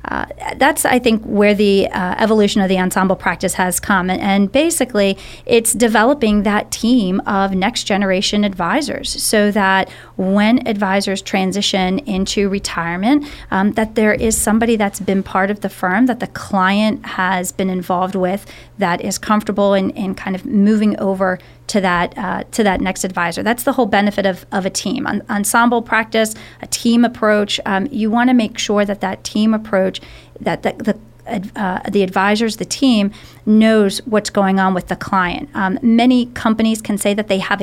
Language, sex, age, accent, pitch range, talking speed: English, female, 30-49, American, 190-225 Hz, 175 wpm